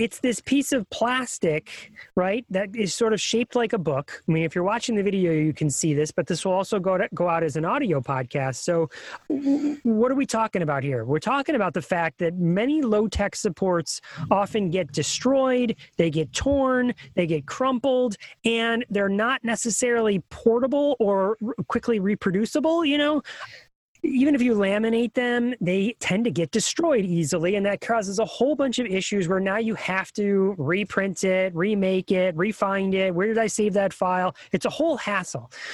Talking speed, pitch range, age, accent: 190 wpm, 180-235 Hz, 30-49, American